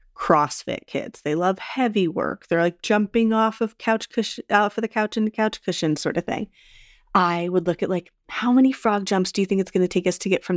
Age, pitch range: 30-49, 155-185 Hz